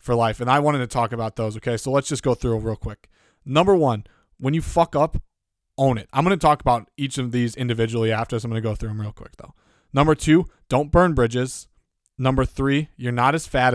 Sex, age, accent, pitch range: male, 20-39, American, 115-145 Hz